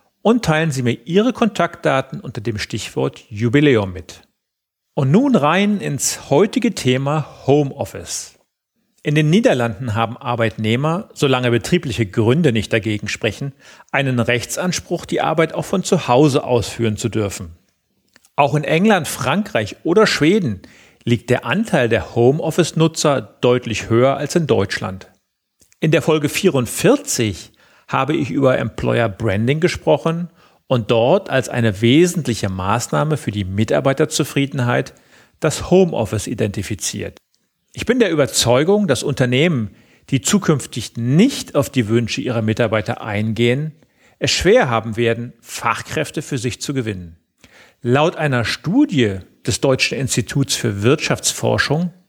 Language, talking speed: German, 125 wpm